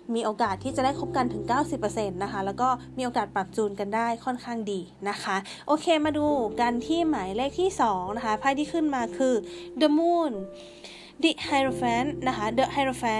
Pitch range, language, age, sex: 215-285 Hz, Thai, 20-39, female